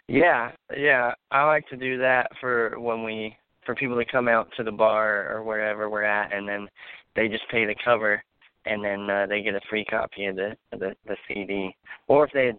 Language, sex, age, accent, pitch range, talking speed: English, male, 20-39, American, 100-120 Hz, 220 wpm